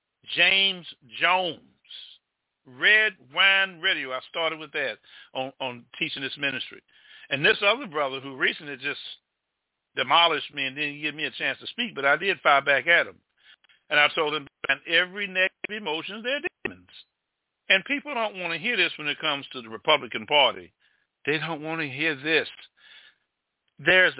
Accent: American